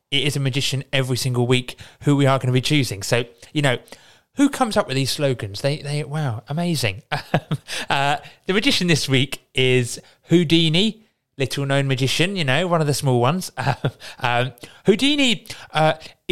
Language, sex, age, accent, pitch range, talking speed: English, male, 30-49, British, 130-175 Hz, 175 wpm